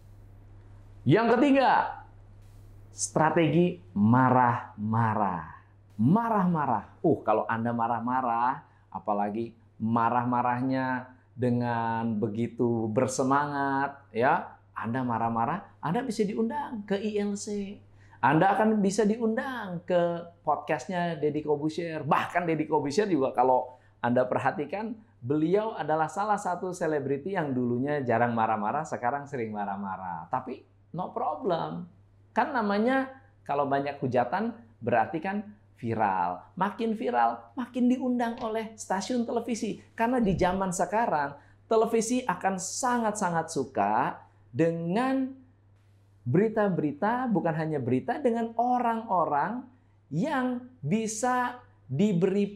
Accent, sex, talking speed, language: native, male, 100 wpm, Indonesian